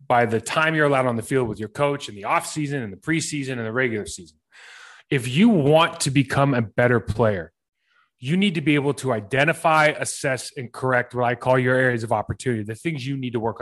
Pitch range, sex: 120-145 Hz, male